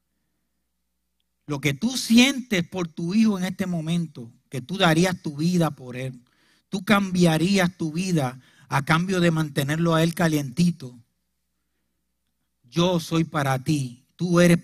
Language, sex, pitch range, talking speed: Spanish, male, 120-180 Hz, 140 wpm